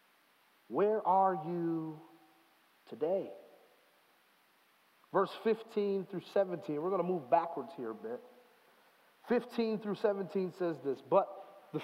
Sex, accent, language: male, American, English